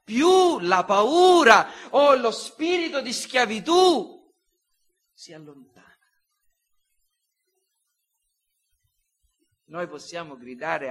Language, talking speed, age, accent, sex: Italian, 70 wpm, 50-69, native, male